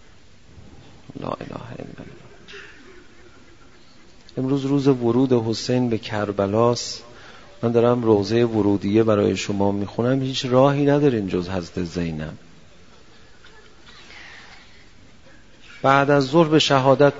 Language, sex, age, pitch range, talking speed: Persian, male, 40-59, 140-175 Hz, 90 wpm